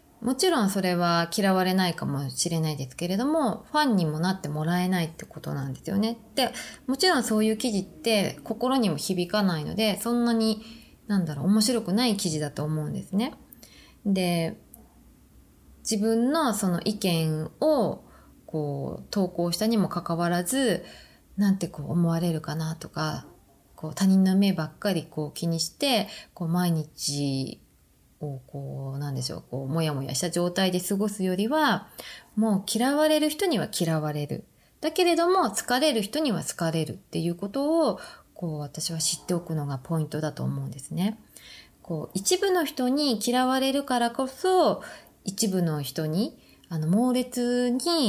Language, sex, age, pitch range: Japanese, female, 20-39, 160-230 Hz